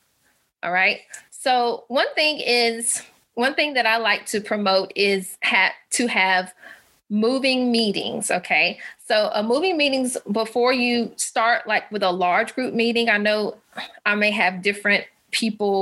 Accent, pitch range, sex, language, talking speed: American, 200-245 Hz, female, English, 150 wpm